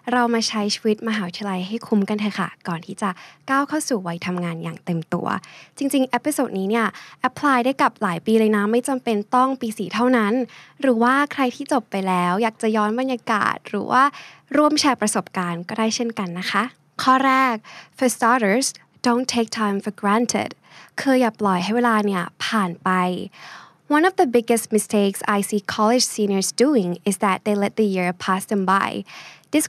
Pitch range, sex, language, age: 200-245 Hz, female, Thai, 10-29